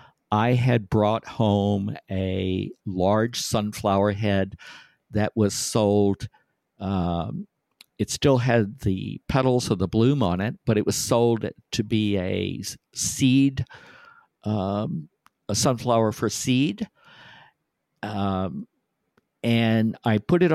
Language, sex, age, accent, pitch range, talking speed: English, male, 50-69, American, 105-125 Hz, 115 wpm